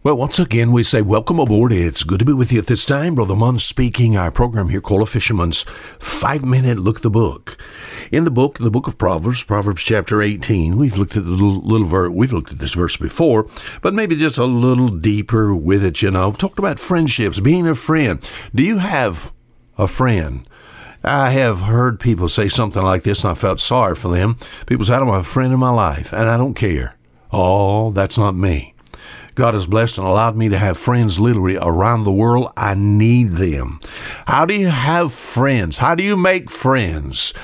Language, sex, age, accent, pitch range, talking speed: English, male, 60-79, American, 100-140 Hz, 215 wpm